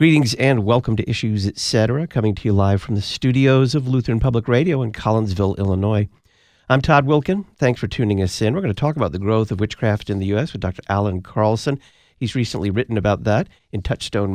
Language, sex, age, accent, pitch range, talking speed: English, male, 50-69, American, 100-125 Hz, 215 wpm